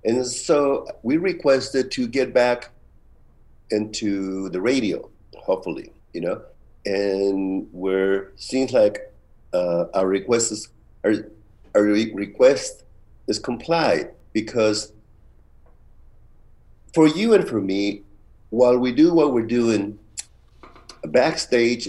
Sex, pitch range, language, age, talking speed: male, 100-125 Hz, English, 50-69, 110 wpm